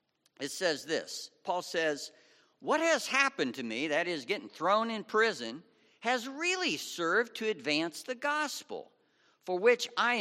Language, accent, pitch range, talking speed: English, American, 140-225 Hz, 155 wpm